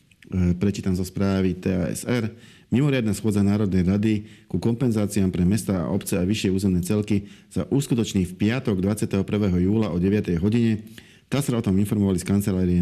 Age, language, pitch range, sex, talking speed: 40-59, Slovak, 95-110 Hz, male, 150 wpm